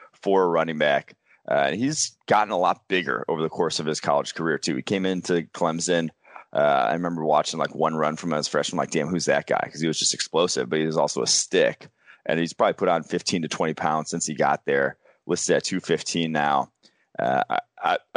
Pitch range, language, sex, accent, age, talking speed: 80-90 Hz, English, male, American, 30-49, 220 wpm